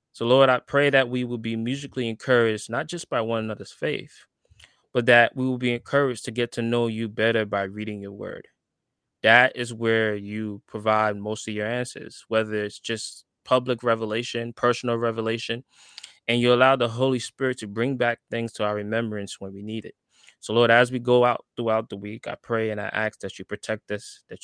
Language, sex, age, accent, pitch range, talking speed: English, male, 20-39, American, 110-130 Hz, 205 wpm